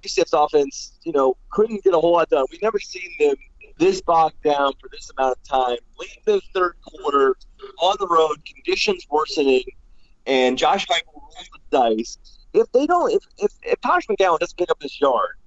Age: 30-49